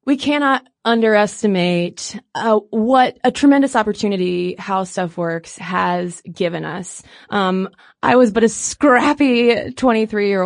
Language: English